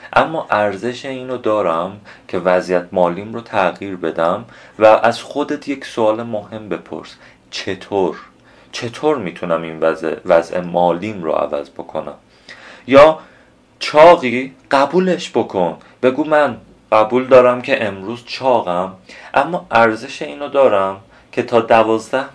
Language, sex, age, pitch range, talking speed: Persian, male, 30-49, 90-125 Hz, 120 wpm